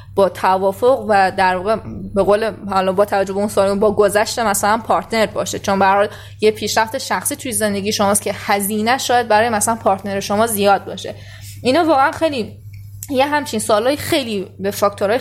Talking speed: 170 wpm